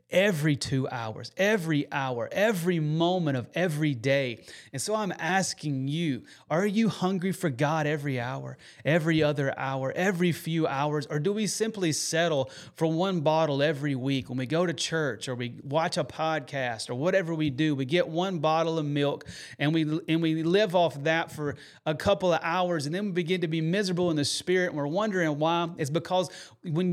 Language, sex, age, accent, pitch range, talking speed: English, male, 30-49, American, 150-200 Hz, 195 wpm